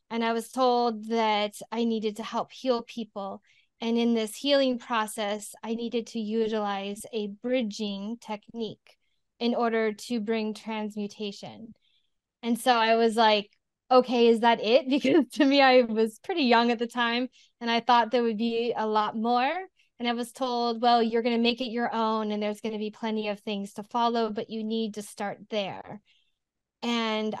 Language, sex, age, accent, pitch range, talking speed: English, female, 10-29, American, 210-235 Hz, 180 wpm